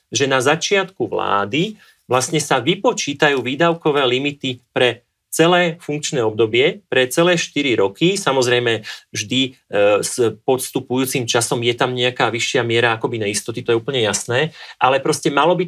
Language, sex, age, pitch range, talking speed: Slovak, male, 40-59, 125-165 Hz, 150 wpm